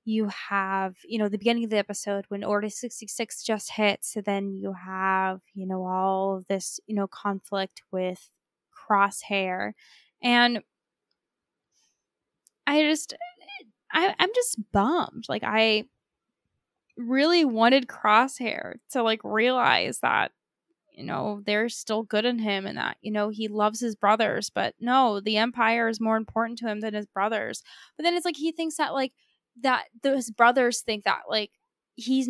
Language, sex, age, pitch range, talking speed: English, female, 10-29, 210-285 Hz, 160 wpm